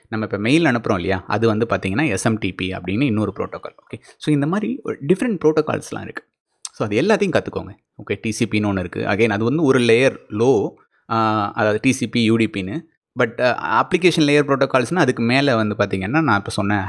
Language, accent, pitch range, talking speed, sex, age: Tamil, native, 105-145 Hz, 165 wpm, male, 30-49